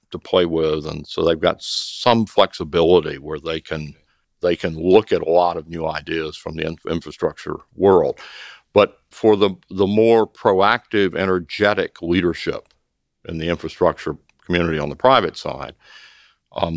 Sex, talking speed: male, 150 wpm